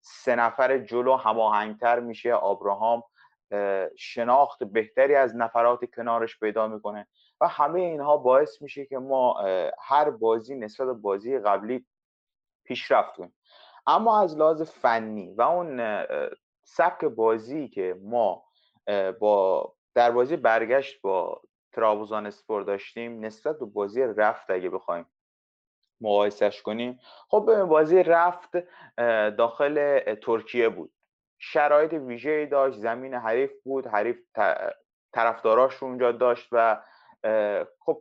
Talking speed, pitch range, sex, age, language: 115 wpm, 110-155 Hz, male, 30-49, Persian